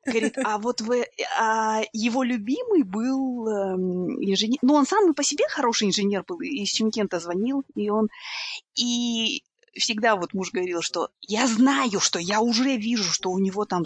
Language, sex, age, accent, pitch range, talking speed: Russian, female, 20-39, native, 210-285 Hz, 165 wpm